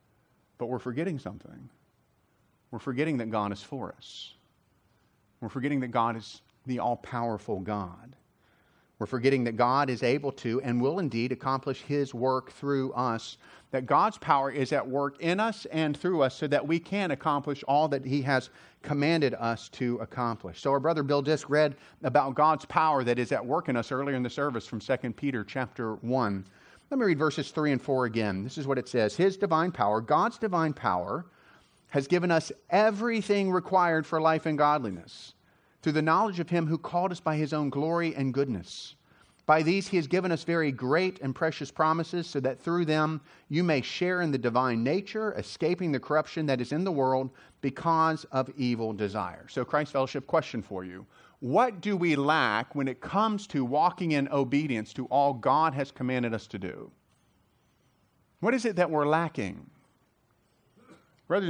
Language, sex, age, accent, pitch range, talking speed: English, male, 40-59, American, 125-160 Hz, 185 wpm